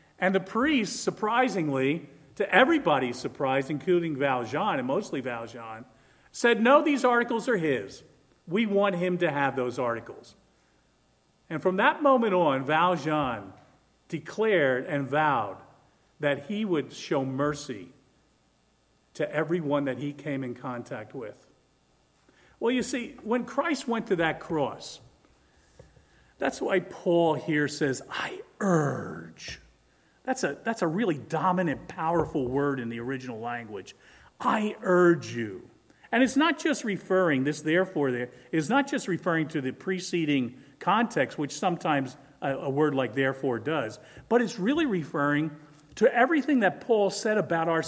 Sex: male